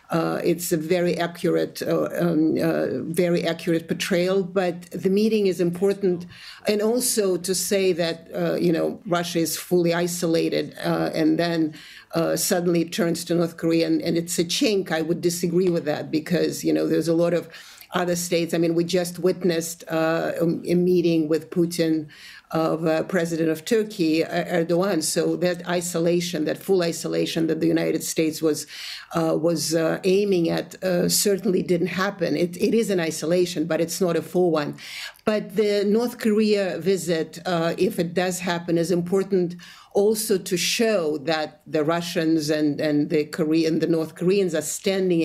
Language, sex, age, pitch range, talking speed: English, female, 50-69, 165-185 Hz, 175 wpm